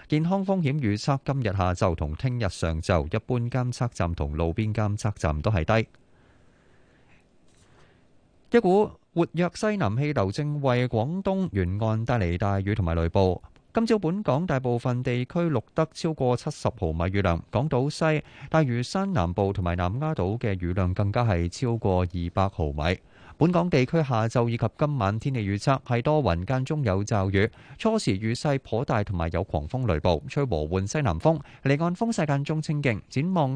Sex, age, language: male, 30-49, Chinese